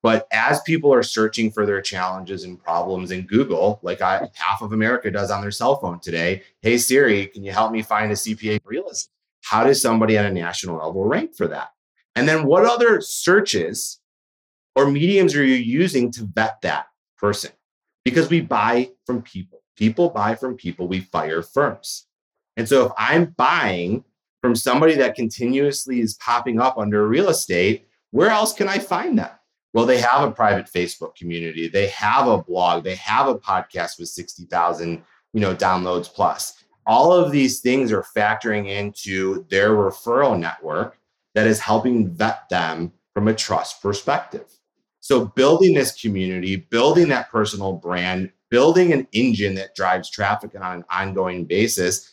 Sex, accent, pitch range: male, American, 95-125 Hz